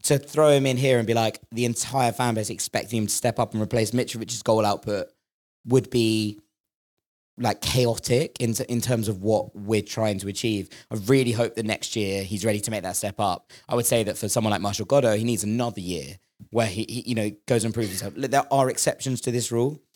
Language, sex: English, male